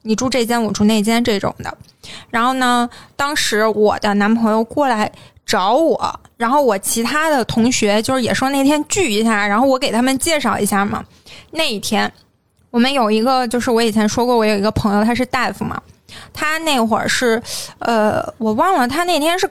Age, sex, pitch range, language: 20-39, female, 220-275 Hz, Chinese